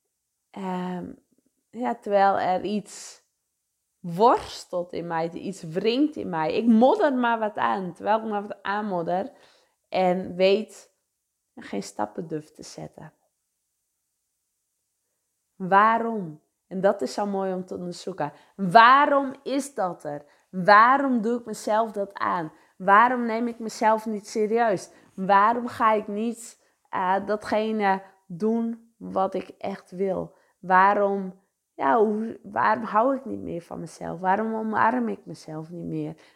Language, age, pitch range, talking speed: English, 20-39, 190-230 Hz, 130 wpm